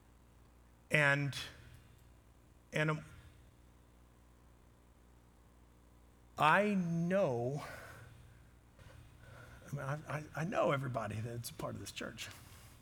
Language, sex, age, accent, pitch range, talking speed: English, male, 50-69, American, 100-155 Hz, 75 wpm